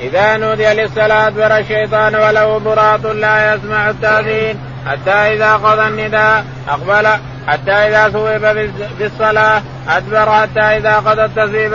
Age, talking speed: 20-39, 125 wpm